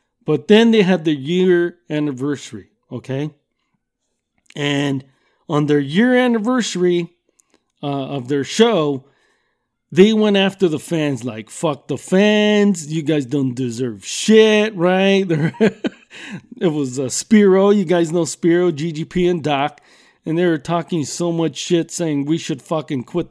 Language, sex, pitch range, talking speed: English, male, 150-200 Hz, 140 wpm